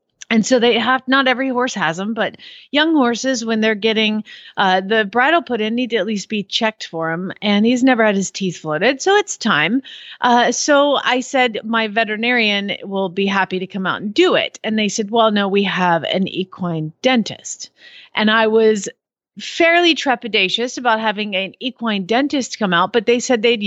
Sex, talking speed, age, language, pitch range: female, 200 wpm, 40-59, English, 195-255 Hz